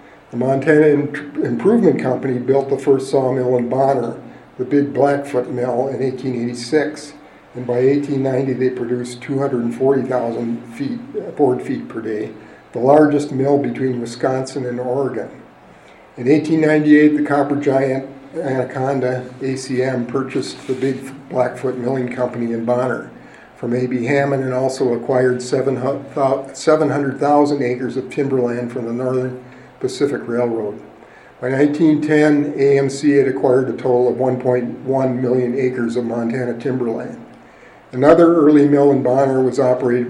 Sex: male